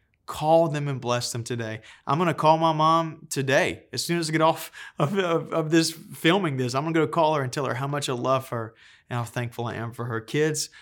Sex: male